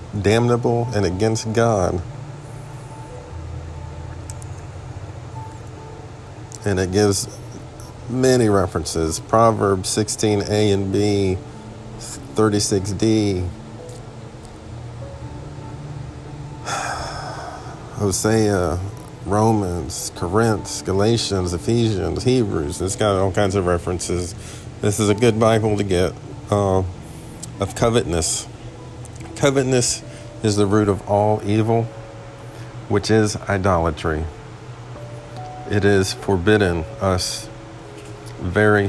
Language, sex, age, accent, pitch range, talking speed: English, male, 50-69, American, 100-115 Hz, 80 wpm